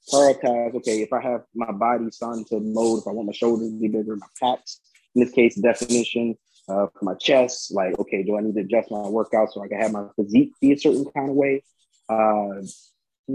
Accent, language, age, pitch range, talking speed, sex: American, English, 20-39, 105-120 Hz, 225 wpm, male